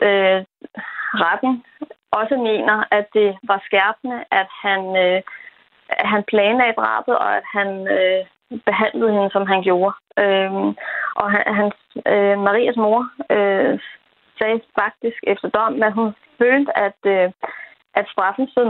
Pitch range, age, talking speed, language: 200-235 Hz, 20-39, 140 wpm, Danish